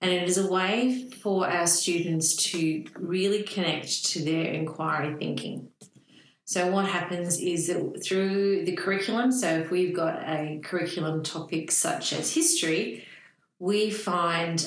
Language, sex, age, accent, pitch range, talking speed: English, female, 40-59, Australian, 165-190 Hz, 145 wpm